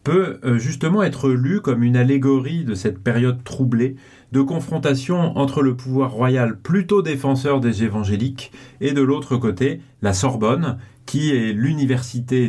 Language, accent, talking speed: French, French, 145 wpm